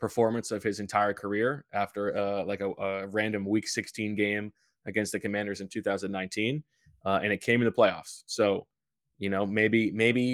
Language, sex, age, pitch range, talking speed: English, male, 20-39, 100-120 Hz, 180 wpm